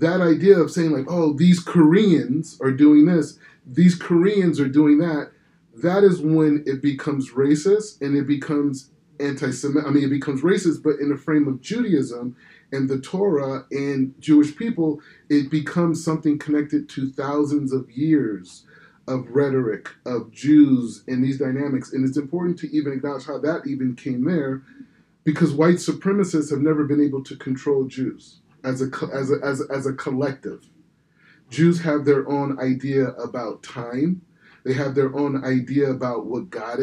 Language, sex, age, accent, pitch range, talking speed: English, male, 30-49, American, 135-165 Hz, 165 wpm